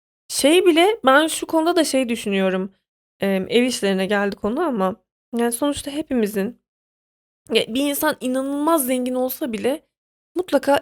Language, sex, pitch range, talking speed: Turkish, female, 210-265 Hz, 130 wpm